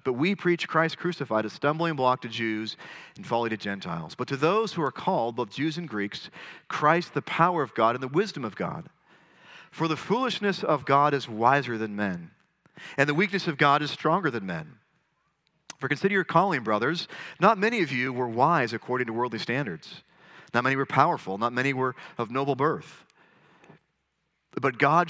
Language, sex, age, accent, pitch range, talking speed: English, male, 40-59, American, 120-175 Hz, 190 wpm